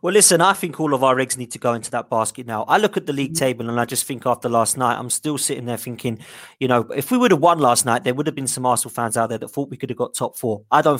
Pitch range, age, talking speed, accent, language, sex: 125-160 Hz, 20-39, 335 wpm, British, English, male